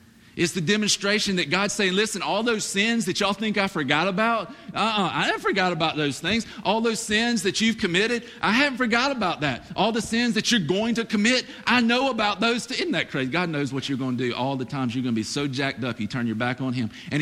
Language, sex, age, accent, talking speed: English, male, 40-59, American, 260 wpm